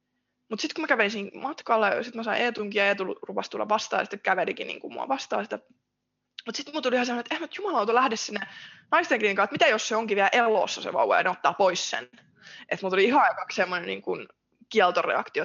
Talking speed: 220 wpm